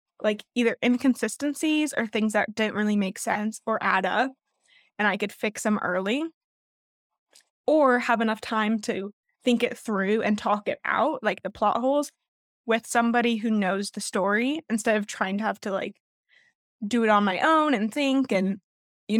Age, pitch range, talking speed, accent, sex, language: 10-29, 205-245 Hz, 180 wpm, American, female, English